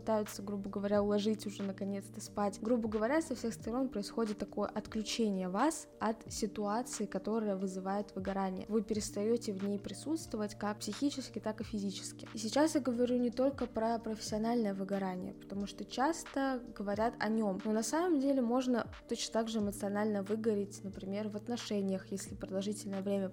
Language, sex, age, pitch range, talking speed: Russian, female, 20-39, 200-225 Hz, 155 wpm